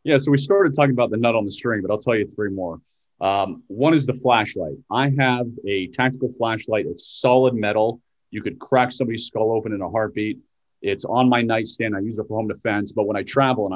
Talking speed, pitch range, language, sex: 235 wpm, 105-125 Hz, English, male